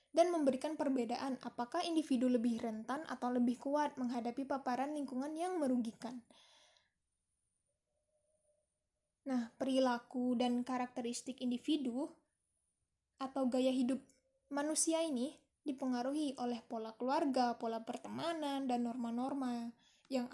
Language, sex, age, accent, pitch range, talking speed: Indonesian, female, 10-29, native, 245-300 Hz, 100 wpm